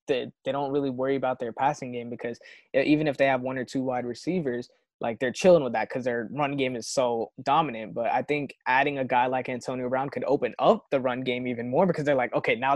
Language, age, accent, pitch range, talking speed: English, 20-39, American, 125-145 Hz, 250 wpm